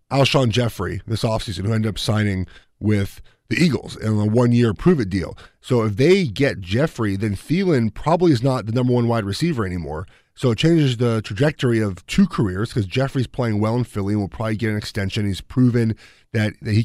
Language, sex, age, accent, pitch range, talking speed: English, male, 30-49, American, 105-130 Hz, 205 wpm